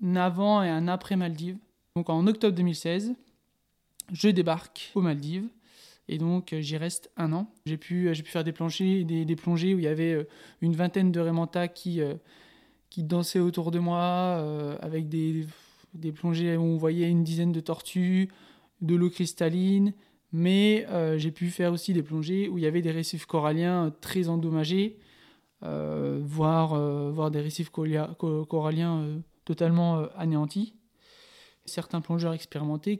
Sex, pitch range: male, 155-180 Hz